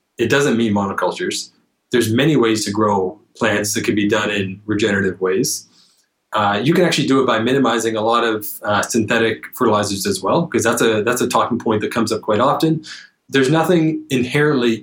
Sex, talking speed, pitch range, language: male, 195 wpm, 110-130 Hz, English